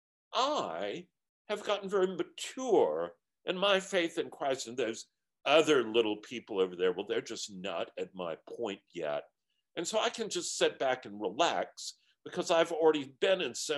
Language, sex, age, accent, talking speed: English, male, 50-69, American, 175 wpm